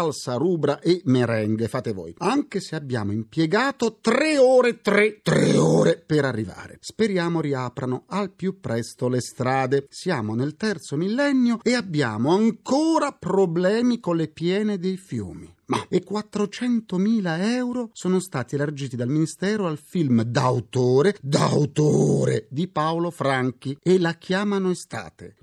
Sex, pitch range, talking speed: male, 130-210 Hz, 135 wpm